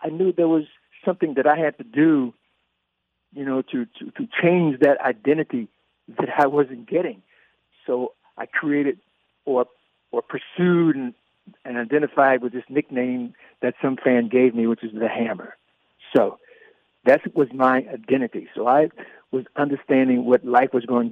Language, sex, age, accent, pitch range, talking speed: English, male, 60-79, American, 125-155 Hz, 160 wpm